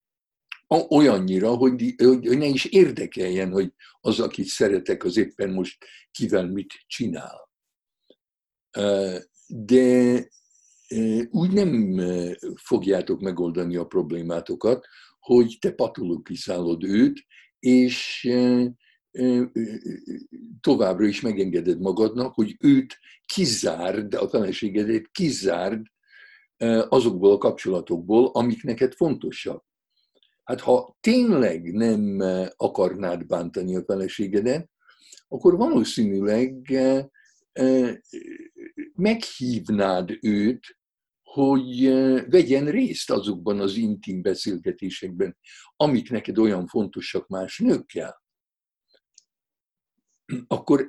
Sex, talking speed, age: male, 80 wpm, 60-79